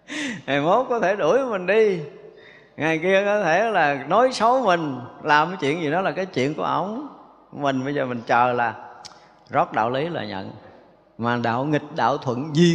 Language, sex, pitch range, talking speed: Vietnamese, male, 130-195 Hz, 200 wpm